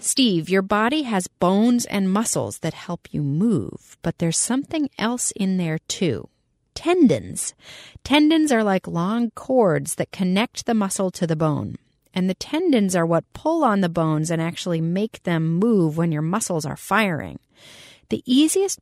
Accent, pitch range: American, 170-240 Hz